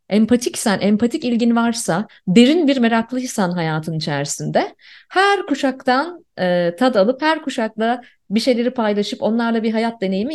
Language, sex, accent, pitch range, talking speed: Turkish, female, native, 175-240 Hz, 135 wpm